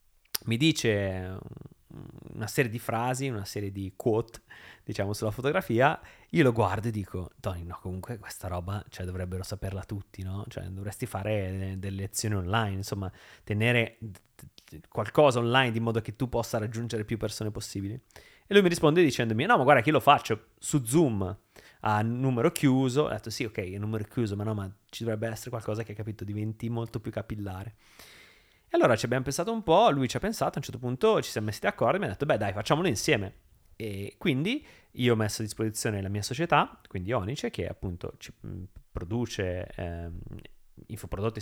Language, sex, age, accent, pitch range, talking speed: Italian, male, 30-49, native, 100-120 Hz, 185 wpm